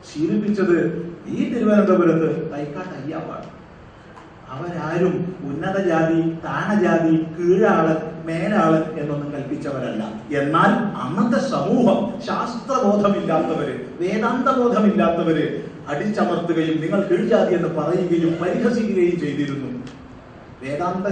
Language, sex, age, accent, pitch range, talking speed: Malayalam, male, 40-59, native, 165-220 Hz, 75 wpm